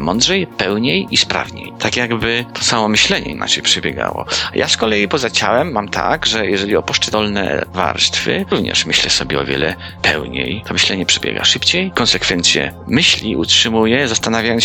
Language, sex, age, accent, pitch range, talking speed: Polish, male, 40-59, native, 95-120 Hz, 150 wpm